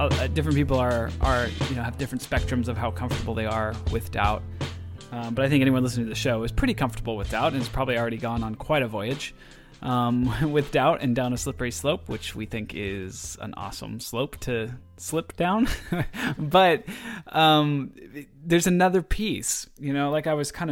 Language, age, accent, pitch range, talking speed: English, 20-39, American, 115-150 Hz, 195 wpm